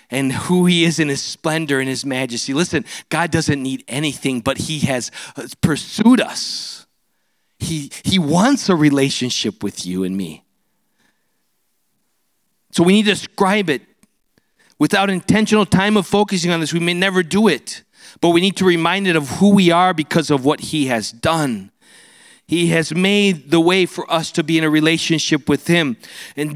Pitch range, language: 145-190 Hz, English